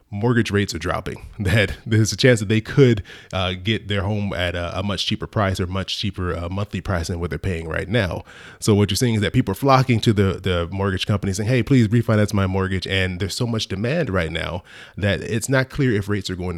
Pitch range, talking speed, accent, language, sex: 90-110 Hz, 245 wpm, American, English, male